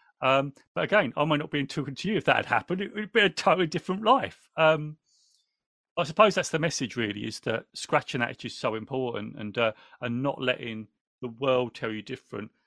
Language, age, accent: English, 40-59, British